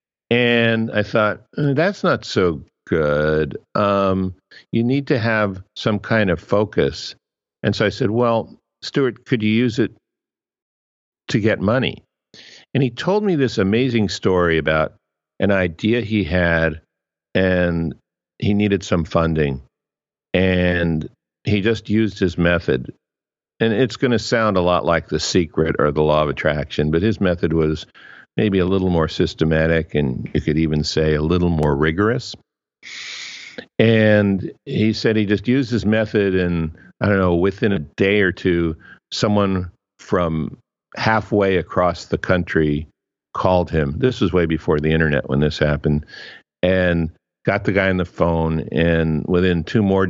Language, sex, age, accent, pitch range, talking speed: English, male, 50-69, American, 80-105 Hz, 155 wpm